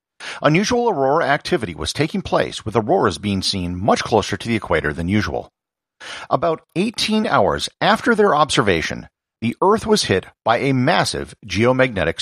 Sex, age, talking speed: male, 50-69, 150 wpm